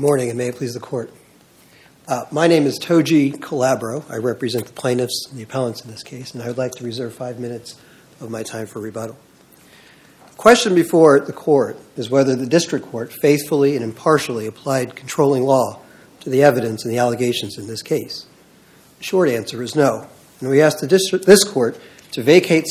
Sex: male